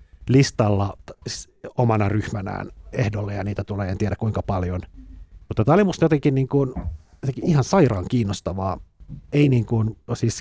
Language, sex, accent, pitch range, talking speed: Finnish, male, native, 85-120 Hz, 145 wpm